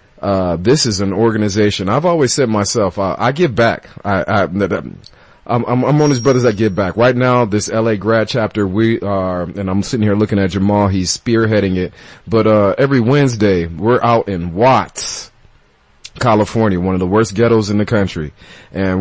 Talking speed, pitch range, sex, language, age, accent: 195 wpm, 85-105 Hz, male, English, 30-49, American